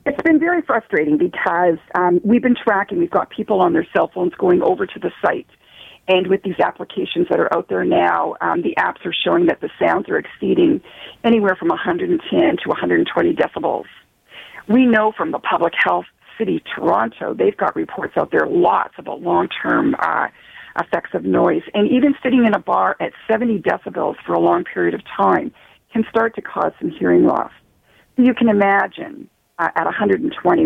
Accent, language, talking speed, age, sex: American, English, 180 wpm, 40-59, female